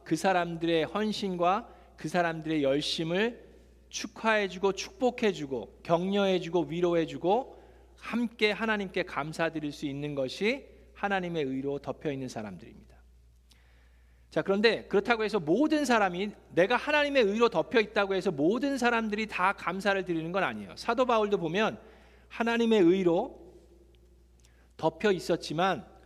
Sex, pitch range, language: male, 130-200 Hz, Korean